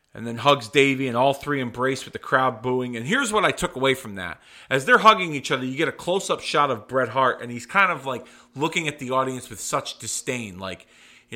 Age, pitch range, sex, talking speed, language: 40-59, 110-135 Hz, male, 250 wpm, English